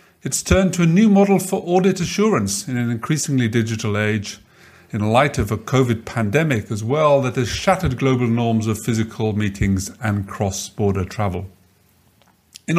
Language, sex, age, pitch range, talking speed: English, male, 50-69, 105-140 Hz, 160 wpm